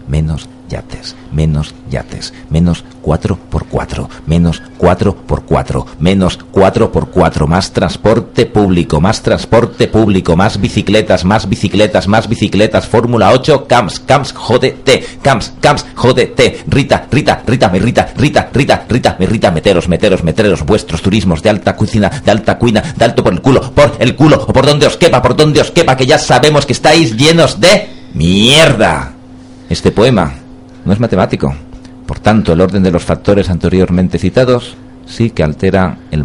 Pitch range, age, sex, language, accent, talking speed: 90-135 Hz, 40-59, male, Spanish, Spanish, 165 wpm